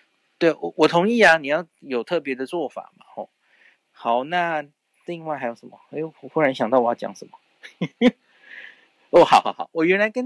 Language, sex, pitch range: Chinese, male, 130-195 Hz